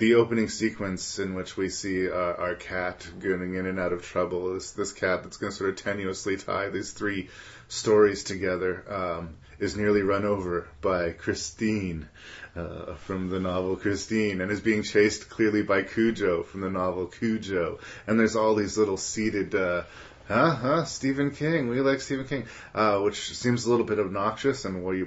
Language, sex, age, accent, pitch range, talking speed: English, male, 30-49, American, 90-110 Hz, 180 wpm